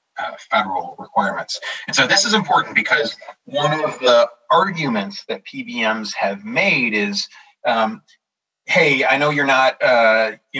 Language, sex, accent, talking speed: English, male, American, 145 wpm